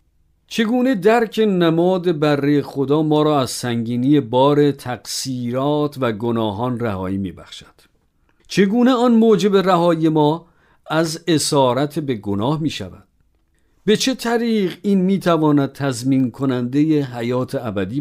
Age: 50-69